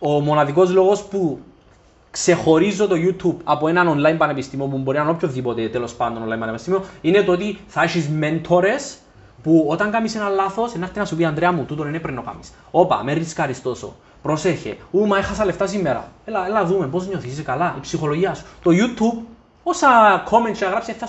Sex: male